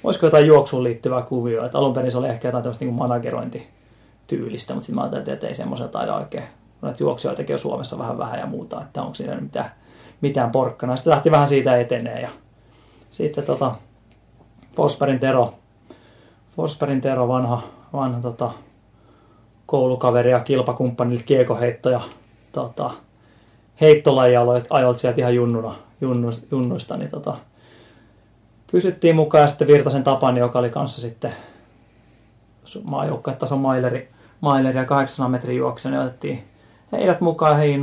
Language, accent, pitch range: Finnish, native, 115-135 Hz